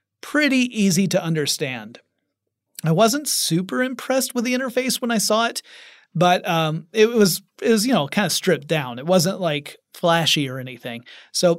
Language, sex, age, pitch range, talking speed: English, male, 30-49, 155-195 Hz, 175 wpm